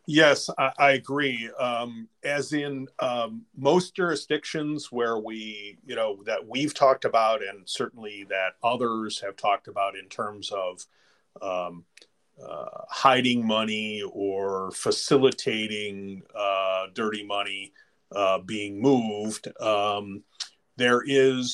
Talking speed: 120 wpm